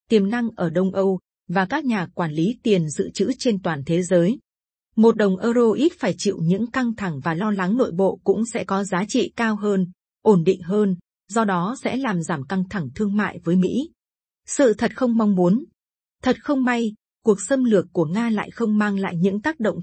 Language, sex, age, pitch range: Vietnamese, female, 20-39, 185-235 Hz